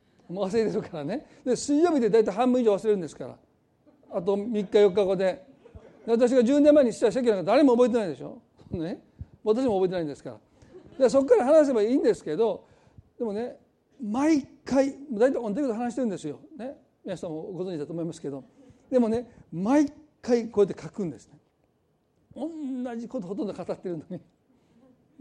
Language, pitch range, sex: Japanese, 180-260 Hz, male